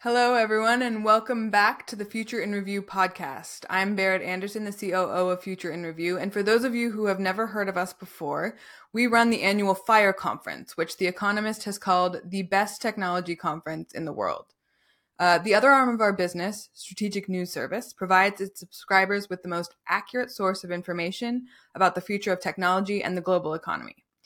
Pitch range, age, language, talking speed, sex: 185-225 Hz, 20-39, English, 195 wpm, female